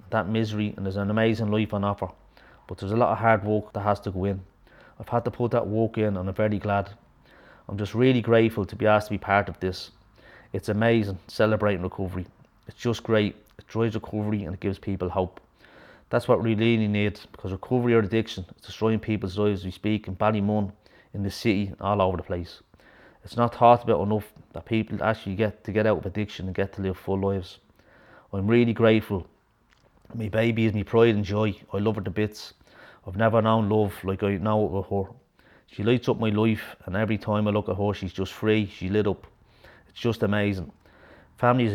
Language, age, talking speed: English, 30-49, 220 wpm